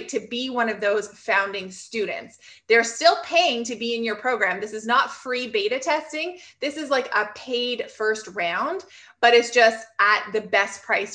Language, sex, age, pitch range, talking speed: English, female, 20-39, 225-280 Hz, 190 wpm